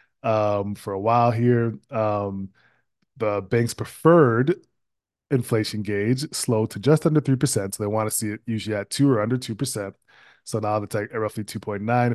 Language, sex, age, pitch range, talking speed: English, male, 20-39, 105-120 Hz, 170 wpm